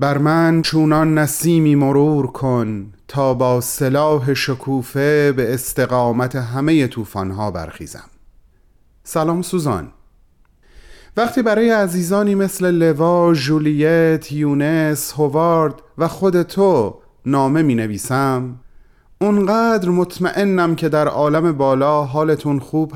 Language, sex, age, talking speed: Persian, male, 30-49, 100 wpm